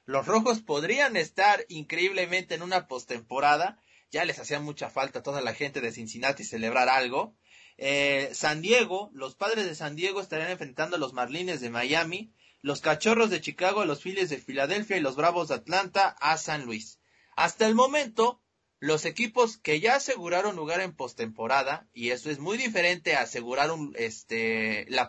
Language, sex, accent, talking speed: Spanish, male, Mexican, 170 wpm